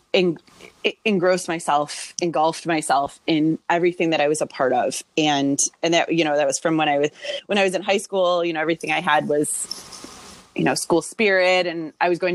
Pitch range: 155-185 Hz